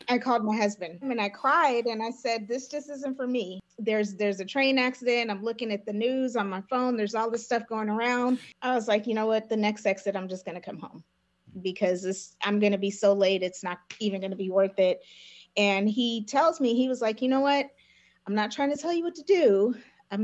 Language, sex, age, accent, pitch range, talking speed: English, female, 30-49, American, 200-250 Hz, 250 wpm